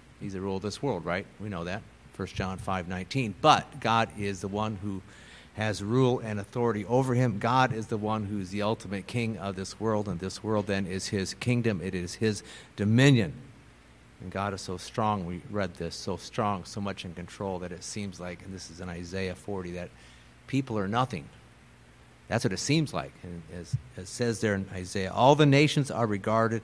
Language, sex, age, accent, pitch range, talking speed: English, male, 50-69, American, 90-115 Hz, 210 wpm